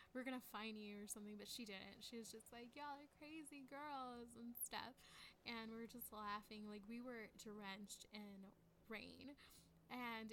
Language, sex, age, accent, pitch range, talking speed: English, female, 10-29, American, 210-240 Hz, 180 wpm